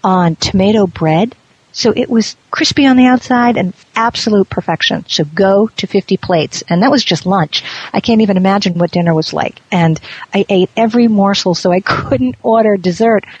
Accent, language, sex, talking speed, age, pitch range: American, English, female, 185 wpm, 50-69, 160-195 Hz